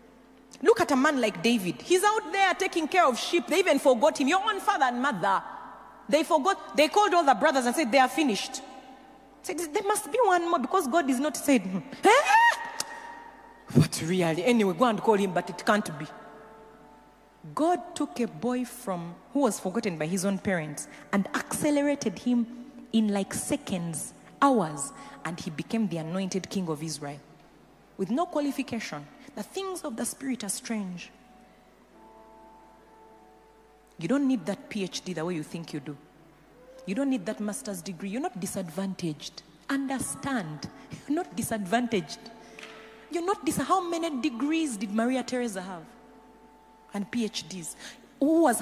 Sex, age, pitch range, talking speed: female, 30-49, 195-295 Hz, 165 wpm